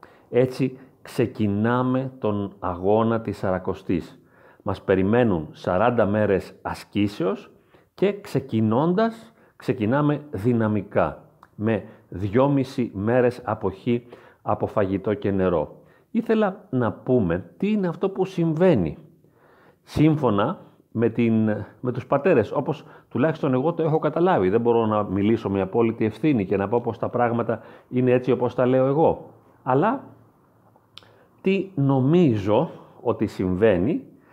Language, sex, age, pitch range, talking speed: Greek, male, 40-59, 105-145 Hz, 115 wpm